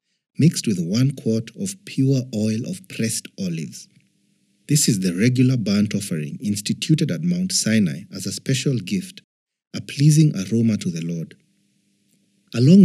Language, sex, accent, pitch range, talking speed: English, male, South African, 110-175 Hz, 145 wpm